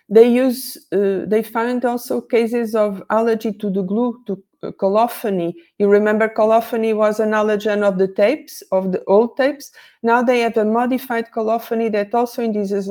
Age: 50-69